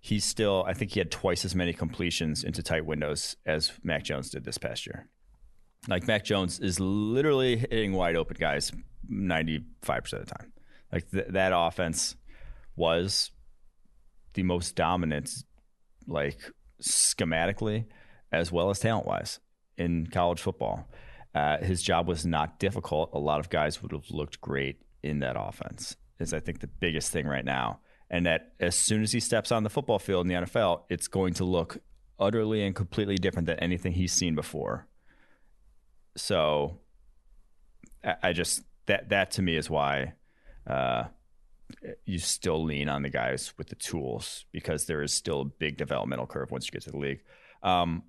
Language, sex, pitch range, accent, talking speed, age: English, male, 80-100 Hz, American, 170 wpm, 30-49